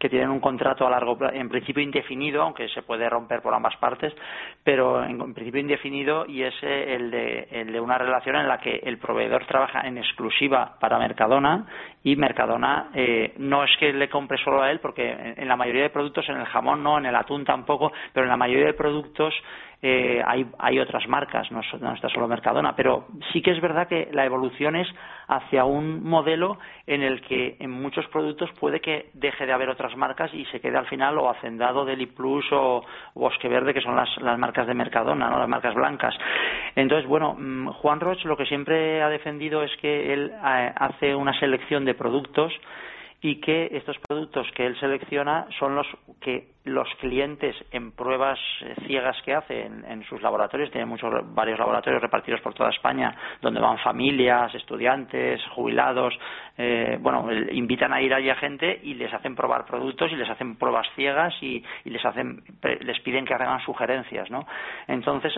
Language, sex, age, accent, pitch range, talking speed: Spanish, male, 40-59, Spanish, 125-150 Hz, 195 wpm